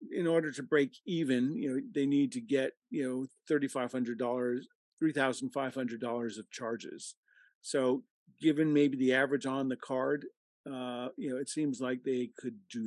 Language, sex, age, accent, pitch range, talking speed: English, male, 50-69, American, 125-150 Hz, 160 wpm